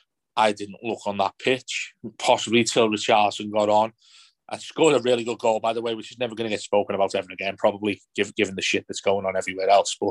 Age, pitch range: 30-49, 105-120 Hz